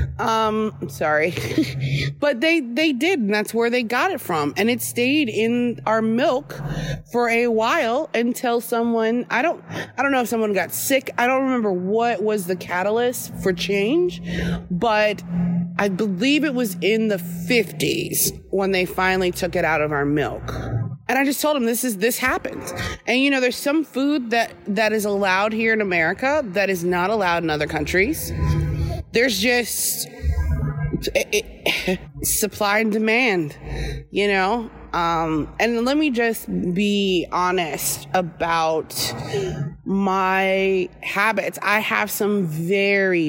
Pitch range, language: 160-230 Hz, English